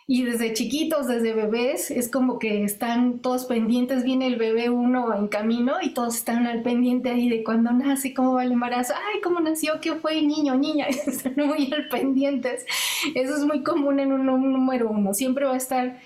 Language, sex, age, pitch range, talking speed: Spanish, female, 30-49, 225-255 Hz, 200 wpm